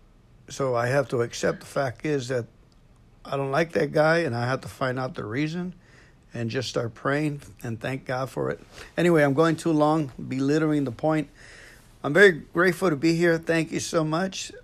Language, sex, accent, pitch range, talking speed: English, male, American, 120-155 Hz, 200 wpm